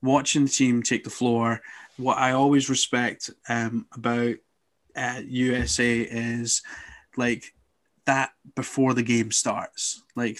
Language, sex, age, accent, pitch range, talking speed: English, male, 20-39, British, 115-135 Hz, 125 wpm